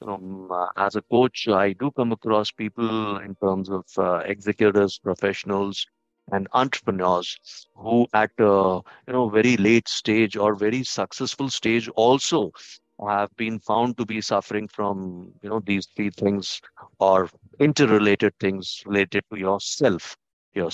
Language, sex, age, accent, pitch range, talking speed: English, male, 50-69, Indian, 95-120 Hz, 140 wpm